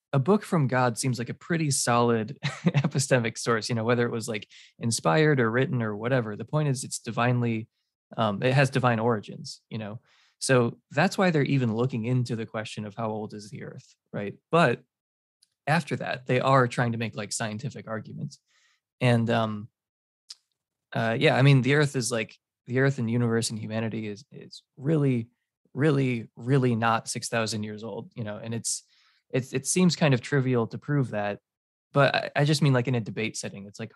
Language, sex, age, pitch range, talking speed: English, male, 20-39, 110-135 Hz, 195 wpm